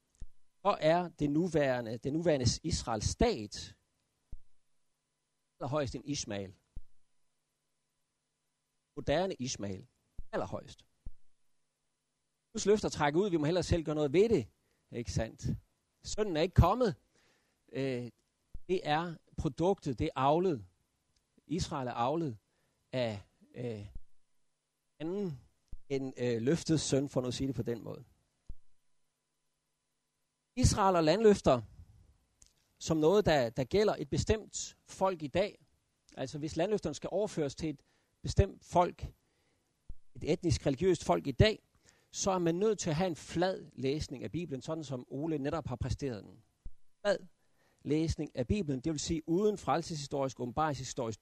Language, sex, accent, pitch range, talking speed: Danish, male, native, 120-165 Hz, 135 wpm